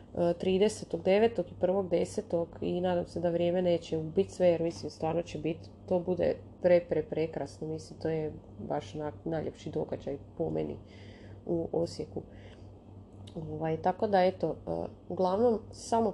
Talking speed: 140 wpm